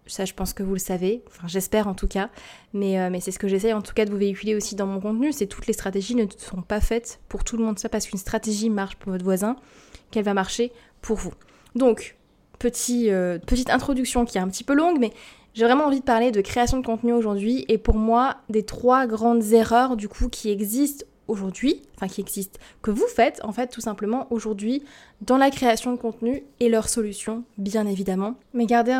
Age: 20-39